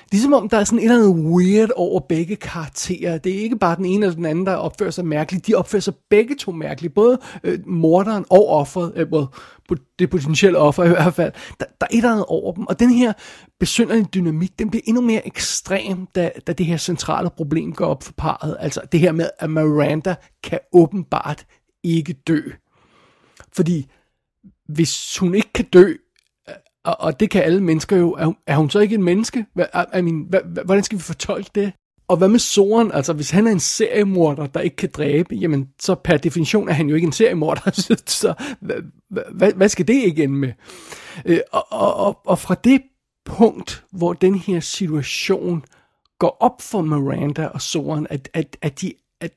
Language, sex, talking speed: Danish, male, 185 wpm